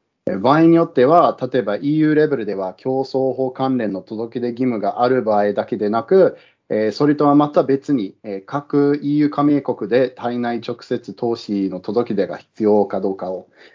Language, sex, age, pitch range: Japanese, male, 40-59, 110-150 Hz